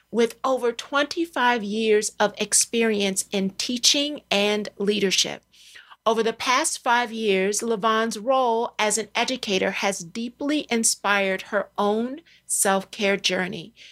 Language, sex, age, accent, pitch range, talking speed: English, female, 40-59, American, 205-255 Hz, 115 wpm